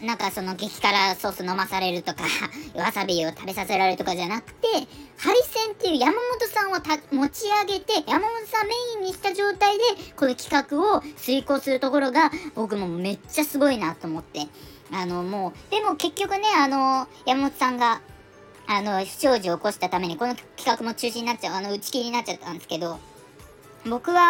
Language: Japanese